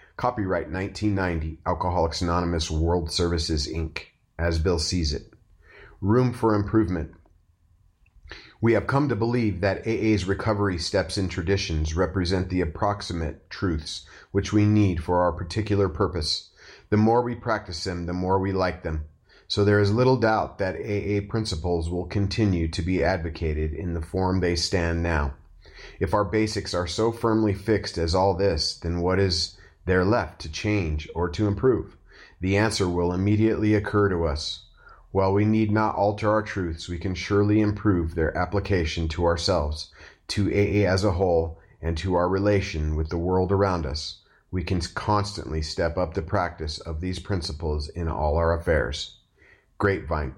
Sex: male